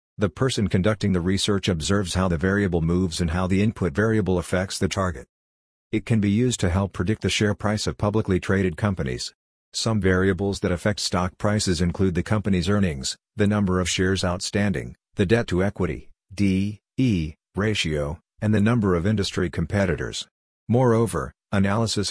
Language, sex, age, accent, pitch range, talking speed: English, male, 50-69, American, 90-105 Hz, 170 wpm